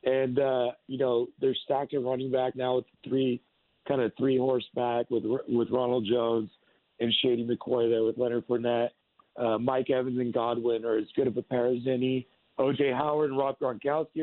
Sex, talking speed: male, 185 wpm